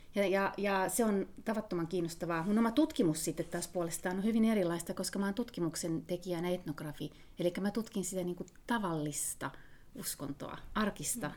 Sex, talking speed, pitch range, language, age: female, 165 wpm, 160-205 Hz, Finnish, 30-49